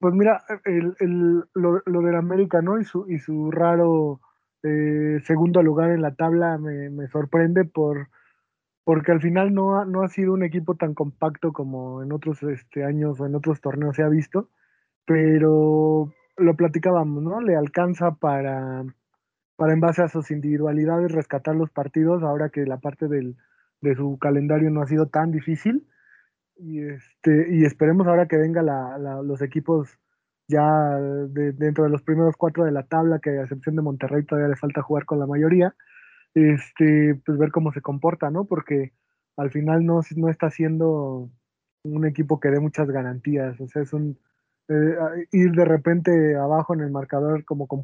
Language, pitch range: Spanish, 145-170 Hz